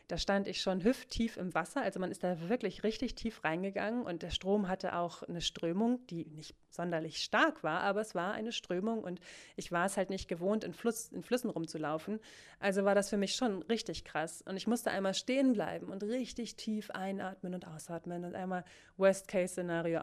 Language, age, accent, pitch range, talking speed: German, 20-39, German, 170-220 Hz, 200 wpm